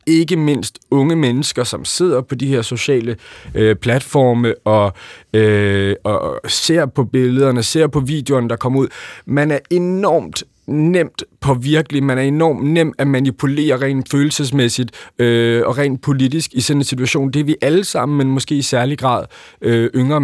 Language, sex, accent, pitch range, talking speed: Danish, male, native, 115-145 Hz, 160 wpm